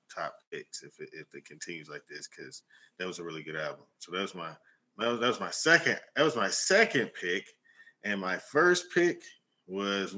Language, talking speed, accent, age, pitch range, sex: English, 210 wpm, American, 20-39, 85-115 Hz, male